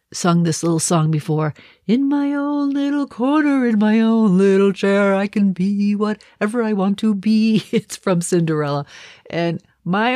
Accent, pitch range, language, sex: American, 155-205 Hz, English, female